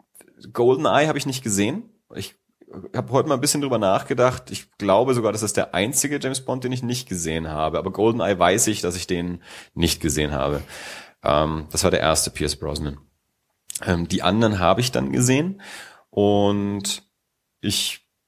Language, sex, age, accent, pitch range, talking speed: German, male, 30-49, German, 90-110 Hz, 175 wpm